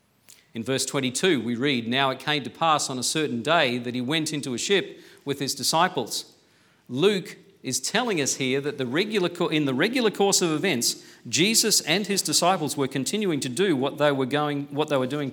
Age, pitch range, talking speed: 50-69, 130-175 Hz, 205 wpm